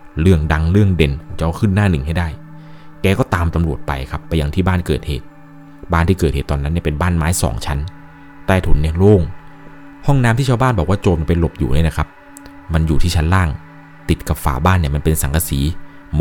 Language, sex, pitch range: Thai, male, 80-105 Hz